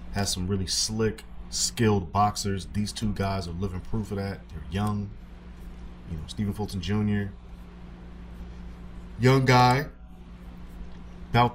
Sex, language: male, English